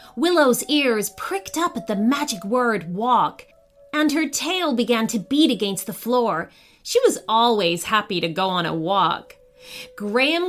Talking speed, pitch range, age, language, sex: 160 wpm, 195-330 Hz, 30-49, English, female